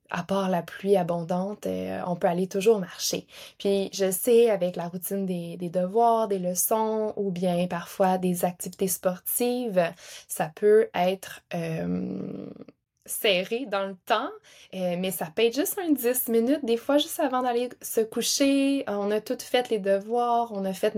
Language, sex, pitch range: French, female, 185-225 Hz